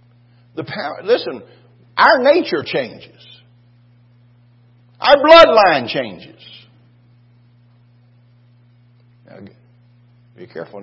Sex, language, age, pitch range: male, English, 60-79, 120-125 Hz